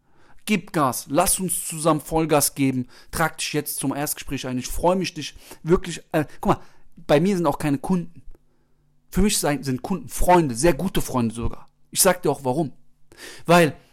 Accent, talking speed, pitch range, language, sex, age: German, 180 wpm, 150-215 Hz, German, male, 40-59